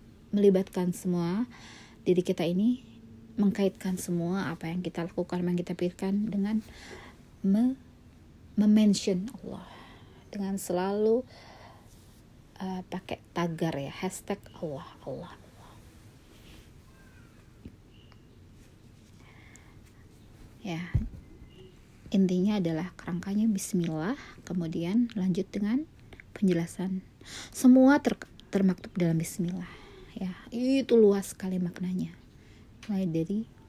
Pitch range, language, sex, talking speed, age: 165-200 Hz, Indonesian, female, 85 wpm, 30-49